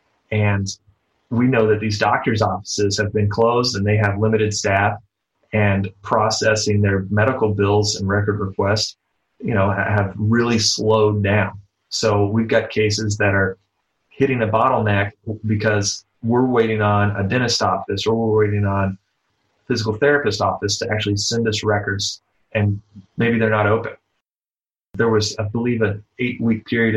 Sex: male